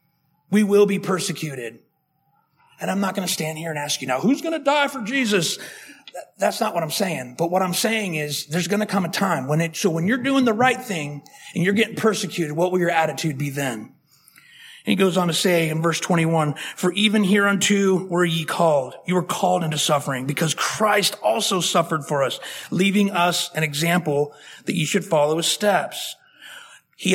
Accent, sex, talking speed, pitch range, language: American, male, 205 wpm, 170-210 Hz, English